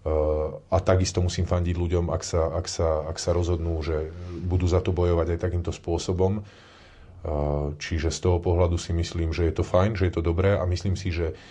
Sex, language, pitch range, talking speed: male, Slovak, 85-95 Hz, 200 wpm